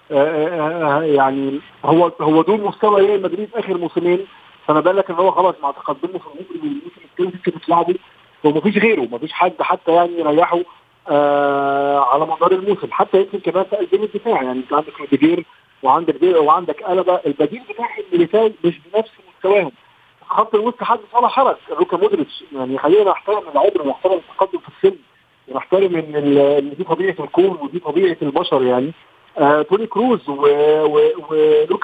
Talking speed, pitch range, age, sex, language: 160 wpm, 160-235 Hz, 40-59, male, Arabic